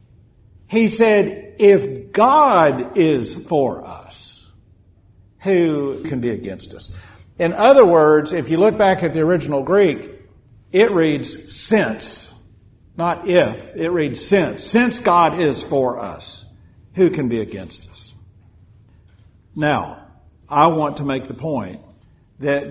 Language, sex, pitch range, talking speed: English, male, 115-170 Hz, 130 wpm